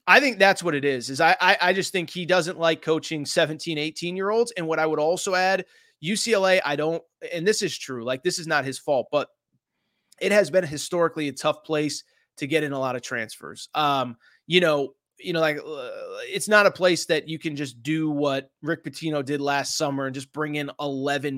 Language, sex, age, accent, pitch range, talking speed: English, male, 30-49, American, 150-185 Hz, 225 wpm